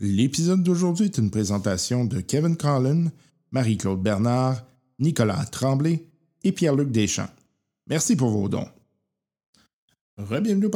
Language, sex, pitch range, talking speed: French, male, 100-135 Hz, 110 wpm